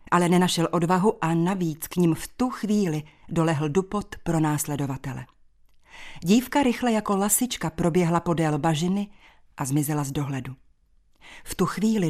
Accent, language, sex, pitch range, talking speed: native, Czech, female, 145-190 Hz, 140 wpm